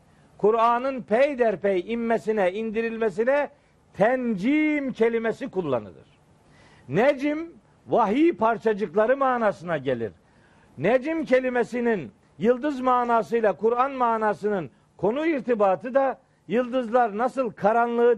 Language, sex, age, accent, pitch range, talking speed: Turkish, male, 50-69, native, 210-255 Hz, 80 wpm